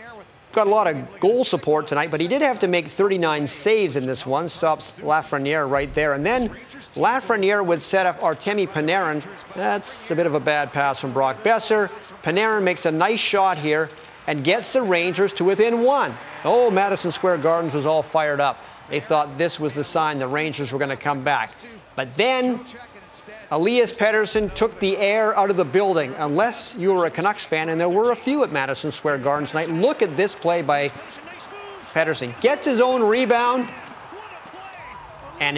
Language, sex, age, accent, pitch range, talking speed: English, male, 40-59, American, 150-215 Hz, 190 wpm